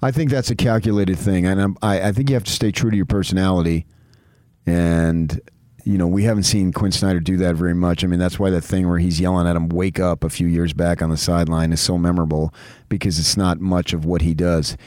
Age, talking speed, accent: 40-59, 245 wpm, American